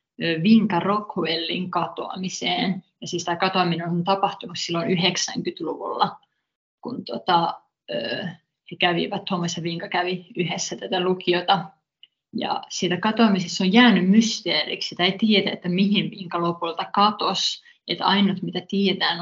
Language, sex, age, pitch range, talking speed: Finnish, female, 20-39, 175-195 Hz, 125 wpm